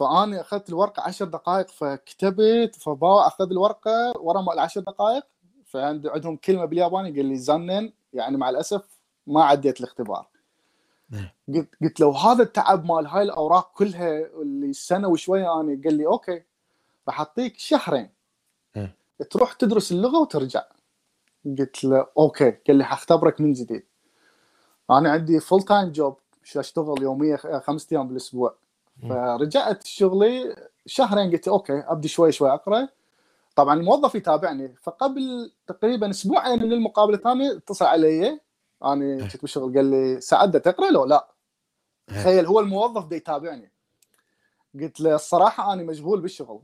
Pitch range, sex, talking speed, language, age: 145-205 Hz, male, 140 wpm, Arabic, 30-49